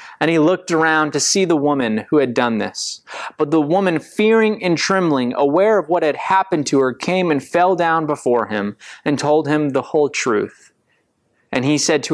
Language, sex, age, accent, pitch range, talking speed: English, male, 20-39, American, 135-180 Hz, 205 wpm